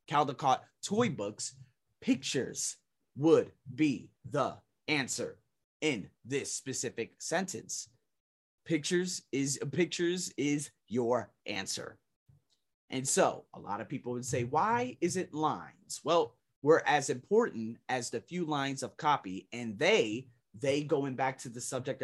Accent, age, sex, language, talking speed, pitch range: American, 30-49, male, English, 130 wpm, 120-160 Hz